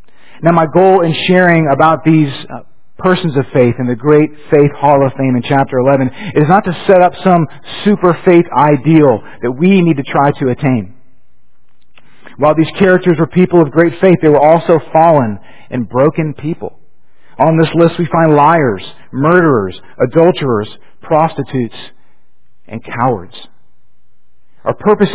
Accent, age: American, 50-69